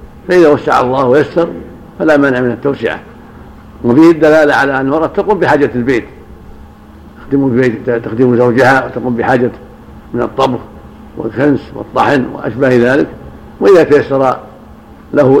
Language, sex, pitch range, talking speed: Arabic, male, 115-140 Hz, 120 wpm